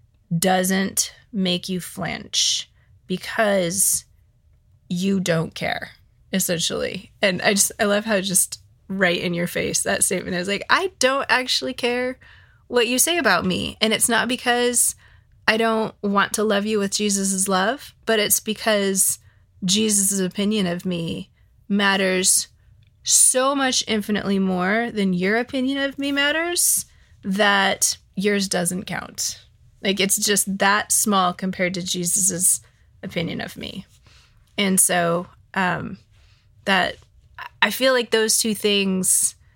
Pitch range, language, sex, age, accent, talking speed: 180-210 Hz, English, female, 20-39, American, 135 wpm